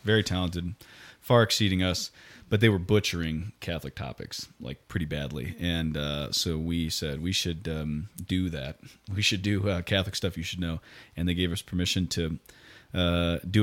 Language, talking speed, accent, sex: English, 180 wpm, American, male